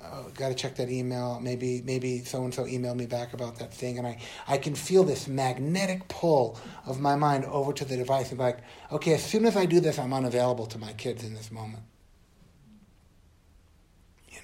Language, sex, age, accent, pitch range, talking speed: English, male, 50-69, American, 115-150 Hz, 210 wpm